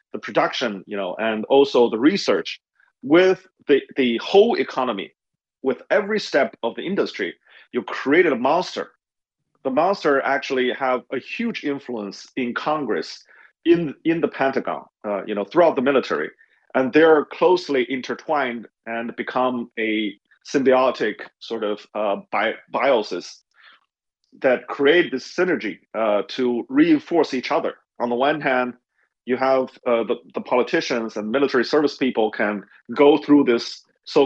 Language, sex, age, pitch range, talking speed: English, male, 30-49, 115-150 Hz, 145 wpm